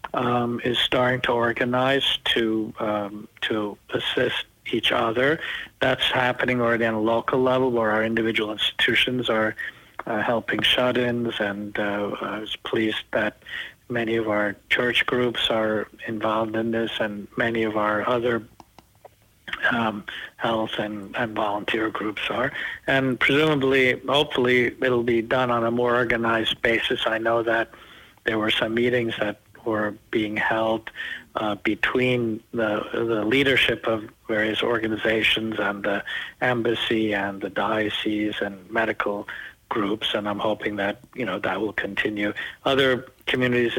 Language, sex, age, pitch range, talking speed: English, male, 60-79, 105-120 Hz, 140 wpm